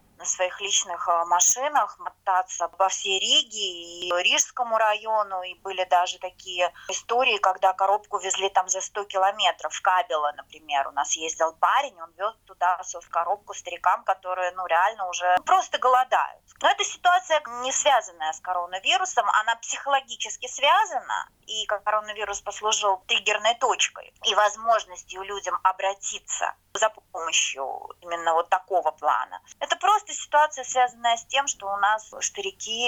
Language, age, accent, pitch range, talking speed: Russian, 20-39, native, 185-245 Hz, 140 wpm